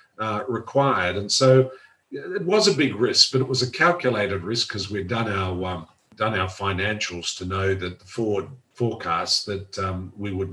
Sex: male